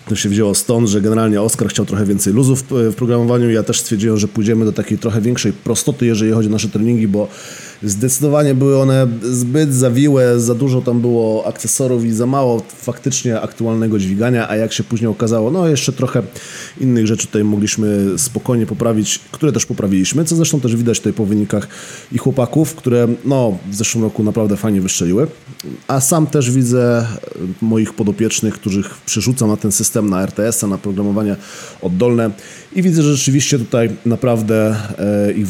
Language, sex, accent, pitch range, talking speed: Polish, male, native, 105-125 Hz, 175 wpm